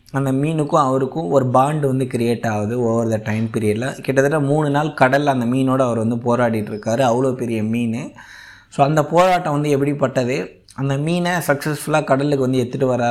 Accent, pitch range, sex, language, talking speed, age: native, 120-150 Hz, male, Tamil, 160 wpm, 20-39